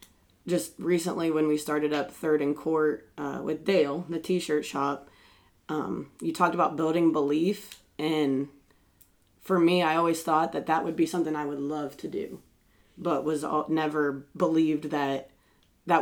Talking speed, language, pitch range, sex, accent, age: 160 wpm, English, 140-175 Hz, female, American, 20-39